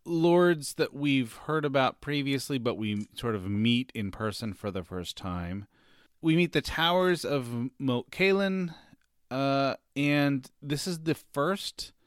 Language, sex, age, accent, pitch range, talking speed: English, male, 30-49, American, 100-145 Hz, 150 wpm